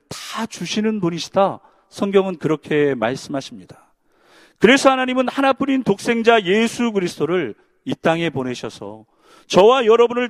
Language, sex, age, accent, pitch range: Korean, male, 40-59, native, 150-240 Hz